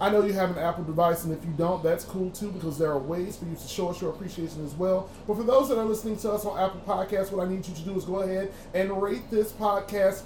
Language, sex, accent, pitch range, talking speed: English, male, American, 175-210 Hz, 300 wpm